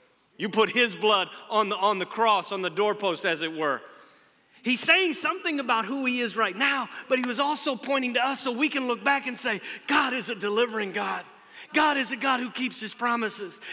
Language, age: English, 40-59